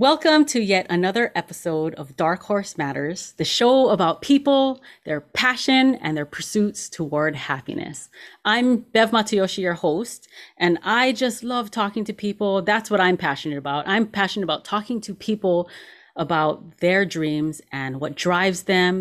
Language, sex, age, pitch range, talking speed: English, female, 30-49, 155-205 Hz, 160 wpm